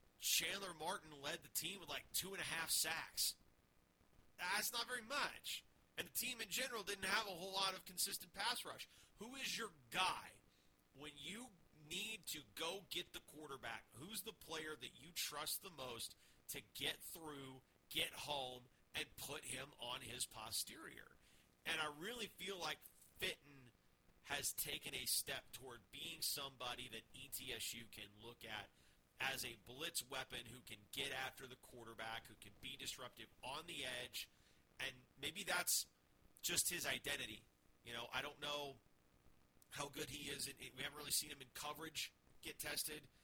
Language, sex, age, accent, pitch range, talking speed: English, male, 30-49, American, 115-155 Hz, 170 wpm